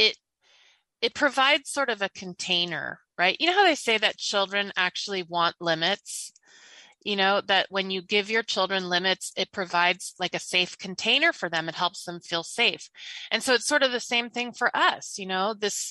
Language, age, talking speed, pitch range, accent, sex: English, 30-49, 200 wpm, 175-240 Hz, American, female